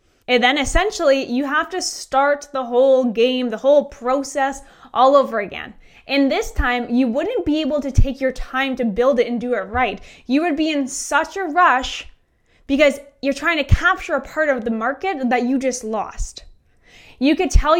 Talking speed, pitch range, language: 195 wpm, 245-295 Hz, English